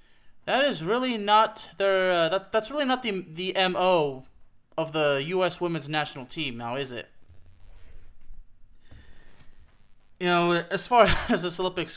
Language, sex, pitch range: English, male, 135-185 Hz